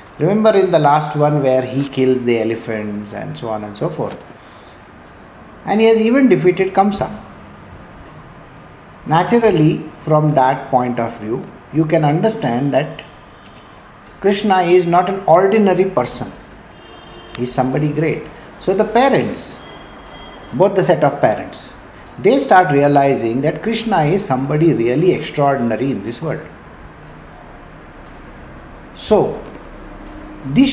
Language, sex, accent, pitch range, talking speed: English, male, Indian, 130-190 Hz, 125 wpm